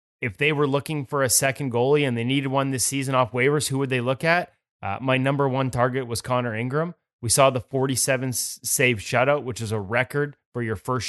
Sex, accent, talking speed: male, American, 225 wpm